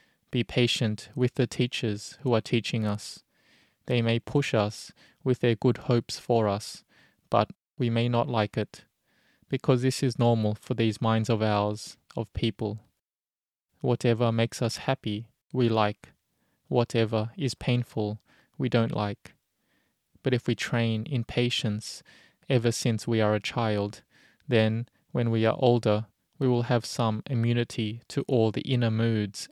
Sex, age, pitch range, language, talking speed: male, 20-39, 110-125 Hz, English, 150 wpm